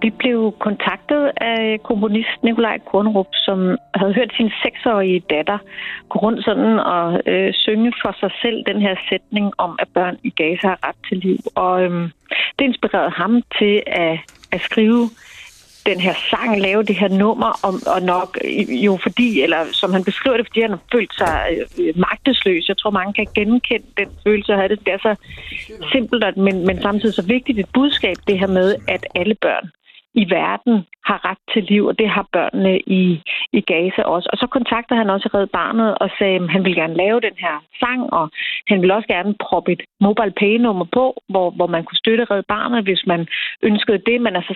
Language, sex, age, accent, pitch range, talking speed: Danish, female, 40-59, native, 190-230 Hz, 195 wpm